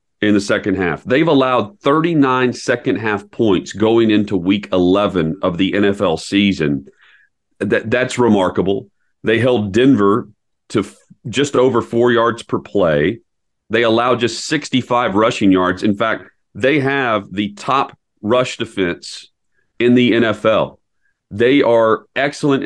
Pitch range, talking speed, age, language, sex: 100-130 Hz, 140 wpm, 40-59, English, male